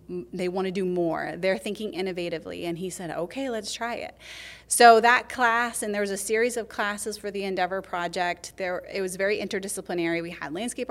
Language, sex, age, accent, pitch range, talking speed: English, female, 30-49, American, 175-215 Hz, 205 wpm